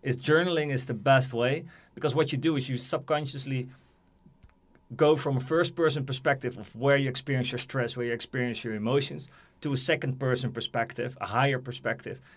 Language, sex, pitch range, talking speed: English, male, 125-155 Hz, 175 wpm